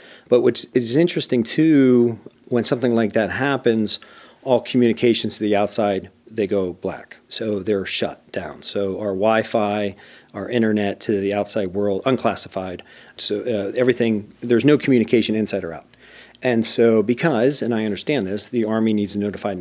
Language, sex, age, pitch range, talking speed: English, male, 40-59, 100-120 Hz, 160 wpm